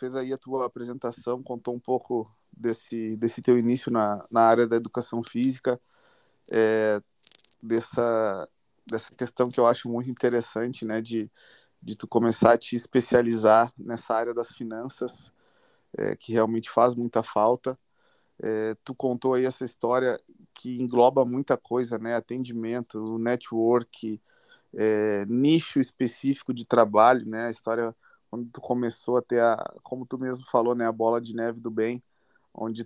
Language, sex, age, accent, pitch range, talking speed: Portuguese, male, 20-39, Brazilian, 115-125 Hz, 155 wpm